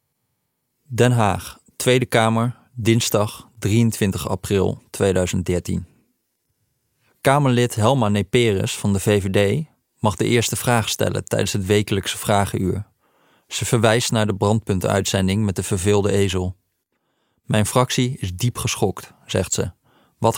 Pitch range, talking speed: 105-130 Hz, 120 wpm